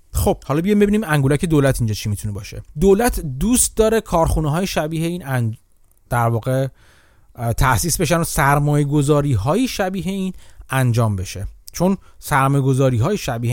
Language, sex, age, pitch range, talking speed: Persian, male, 30-49, 120-185 Hz, 140 wpm